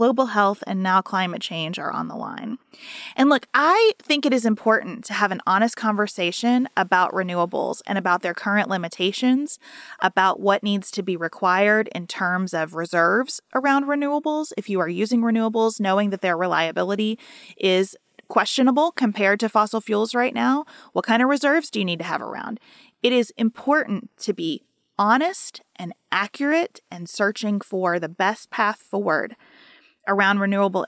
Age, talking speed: 30-49, 165 wpm